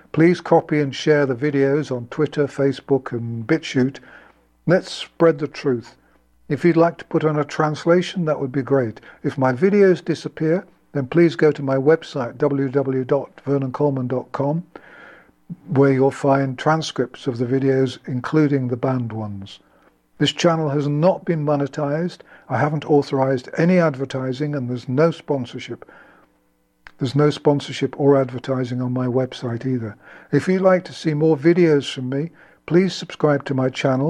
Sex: male